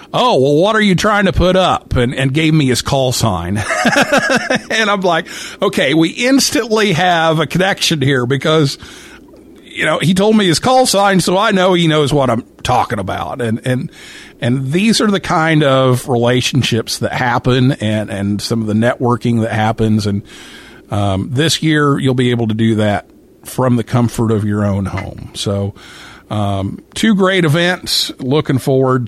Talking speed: 180 wpm